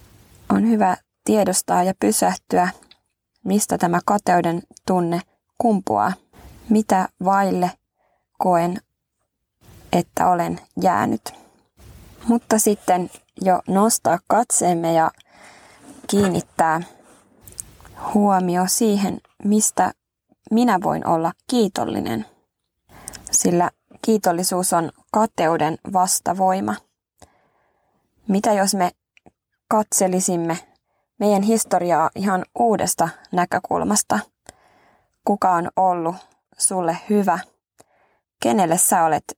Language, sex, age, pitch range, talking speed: Finnish, female, 20-39, 175-210 Hz, 80 wpm